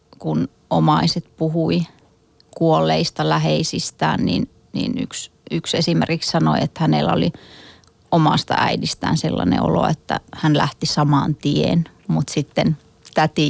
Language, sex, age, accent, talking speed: Finnish, female, 30-49, native, 115 wpm